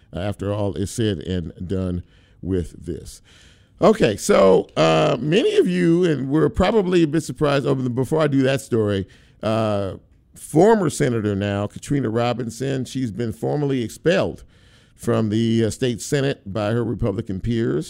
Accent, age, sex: American, 50-69, male